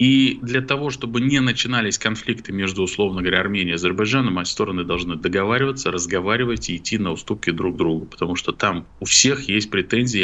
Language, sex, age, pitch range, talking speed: Russian, male, 20-39, 95-125 Hz, 190 wpm